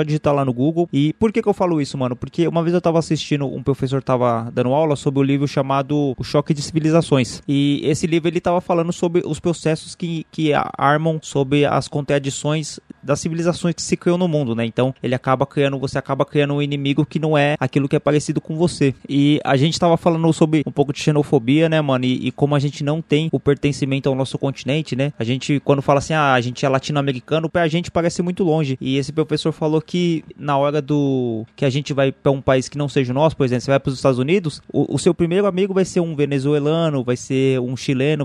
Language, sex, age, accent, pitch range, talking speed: Portuguese, male, 20-39, Brazilian, 135-160 Hz, 240 wpm